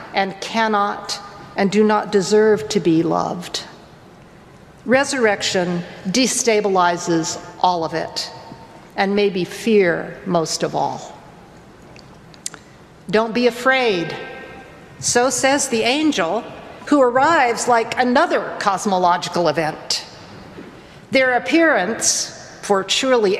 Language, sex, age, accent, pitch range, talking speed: English, female, 50-69, American, 190-245 Hz, 95 wpm